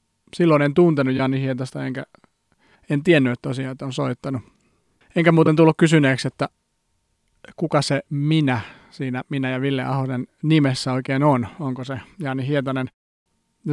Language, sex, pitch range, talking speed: Finnish, male, 130-155 Hz, 145 wpm